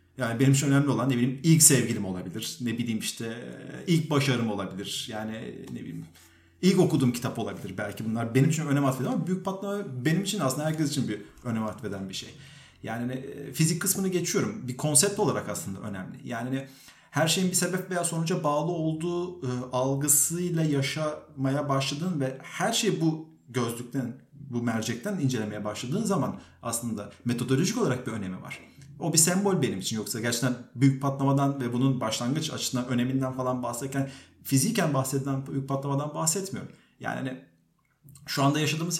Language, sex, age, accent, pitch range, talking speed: Turkish, male, 40-59, native, 120-165 Hz, 160 wpm